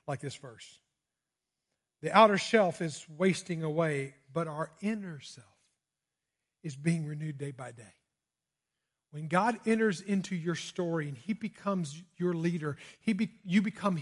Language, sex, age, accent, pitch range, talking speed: English, male, 50-69, American, 155-210 Hz, 145 wpm